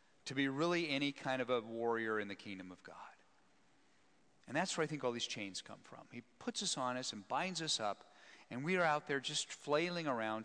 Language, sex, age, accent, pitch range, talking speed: English, male, 40-59, American, 125-180 Hz, 230 wpm